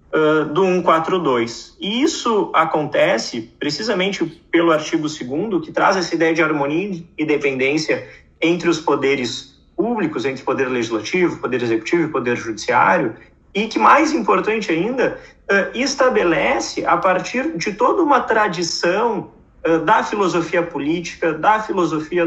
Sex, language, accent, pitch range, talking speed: male, Portuguese, Brazilian, 140-235 Hz, 130 wpm